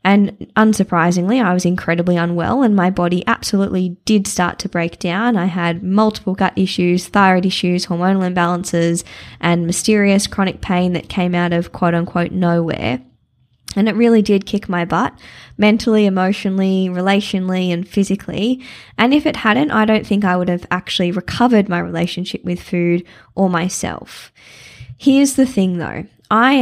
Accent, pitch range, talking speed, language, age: Australian, 175-200 Hz, 160 wpm, English, 20-39